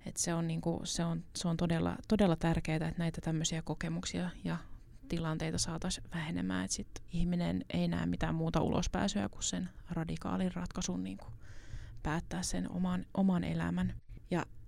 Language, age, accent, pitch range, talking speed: Finnish, 20-39, native, 145-170 Hz, 150 wpm